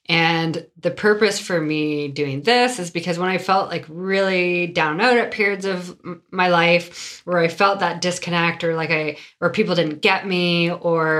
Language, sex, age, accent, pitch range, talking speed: English, female, 20-39, American, 150-180 Hz, 190 wpm